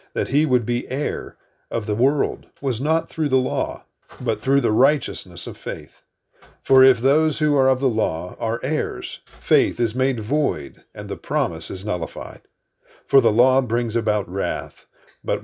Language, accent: English, American